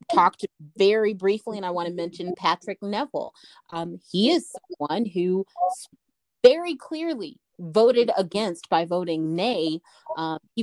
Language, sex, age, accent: English, female, 30-49, American